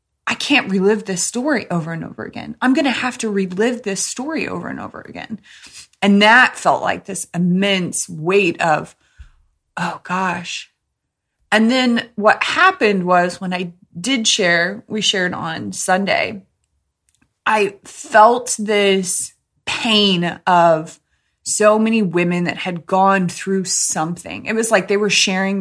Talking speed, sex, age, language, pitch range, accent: 150 wpm, female, 20-39, English, 175-230 Hz, American